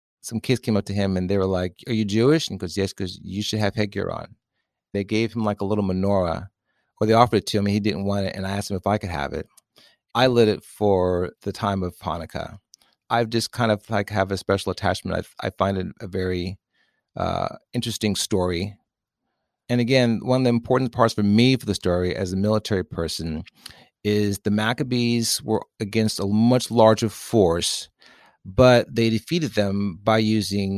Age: 30-49